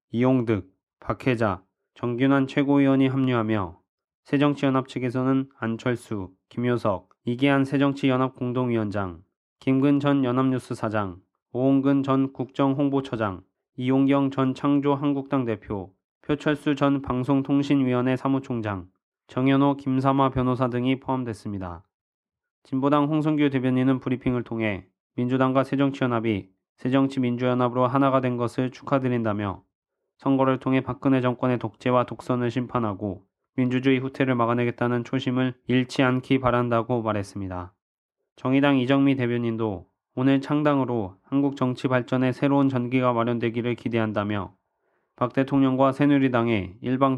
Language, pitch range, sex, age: Korean, 115-135 Hz, male, 20-39